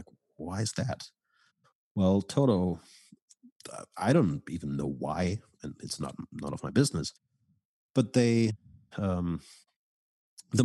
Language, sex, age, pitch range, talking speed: English, male, 50-69, 80-95 Hz, 120 wpm